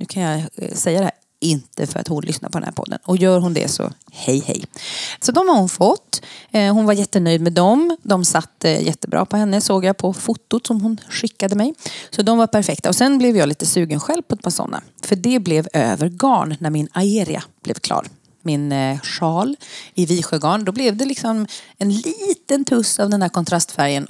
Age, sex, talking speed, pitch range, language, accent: 30-49, female, 210 wpm, 165-220 Hz, Swedish, native